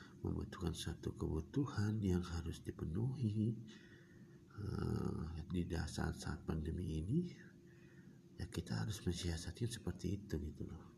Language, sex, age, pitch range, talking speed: Indonesian, male, 50-69, 70-90 Hz, 110 wpm